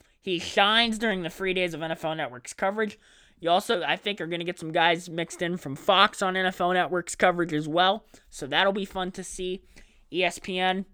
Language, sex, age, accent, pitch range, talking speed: English, male, 20-39, American, 145-185 Hz, 205 wpm